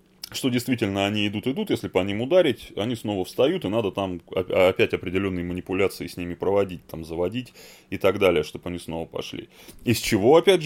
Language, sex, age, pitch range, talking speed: Russian, male, 20-39, 90-125 Hz, 180 wpm